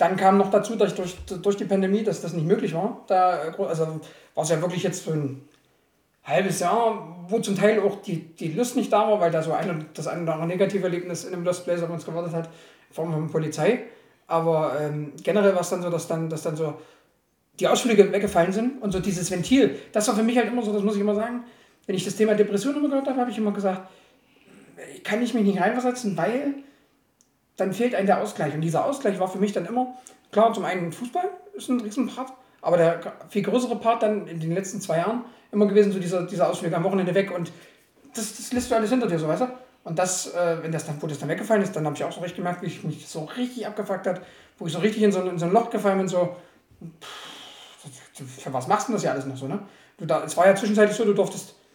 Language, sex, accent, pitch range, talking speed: German, male, German, 165-215 Hz, 245 wpm